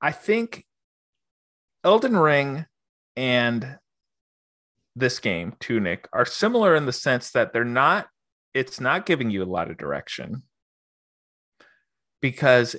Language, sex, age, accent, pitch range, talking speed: English, male, 30-49, American, 105-135 Hz, 115 wpm